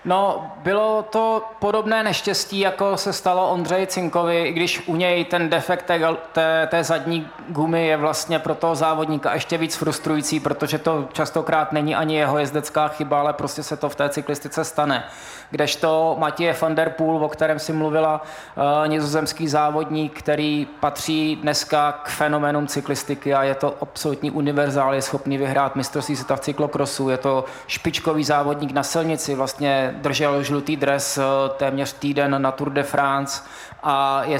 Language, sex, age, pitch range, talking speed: Czech, male, 20-39, 140-160 Hz, 160 wpm